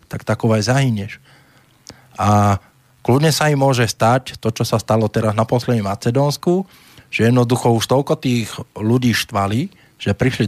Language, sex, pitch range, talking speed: Slovak, male, 115-140 Hz, 150 wpm